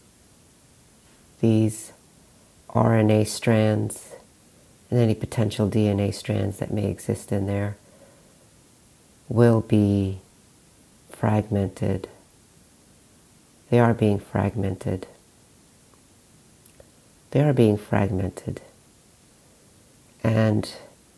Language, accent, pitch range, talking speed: English, American, 100-115 Hz, 70 wpm